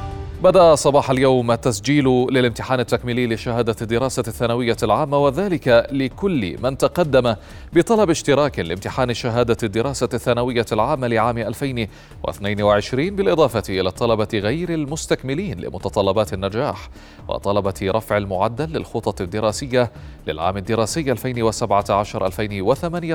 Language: Arabic